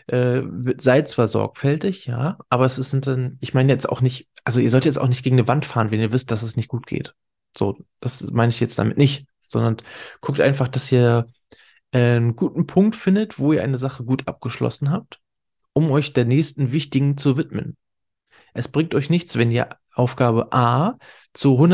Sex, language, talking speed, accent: male, German, 195 wpm, German